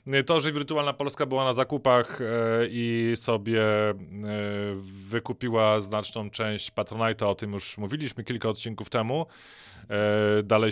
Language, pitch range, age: Polish, 105-130 Hz, 20-39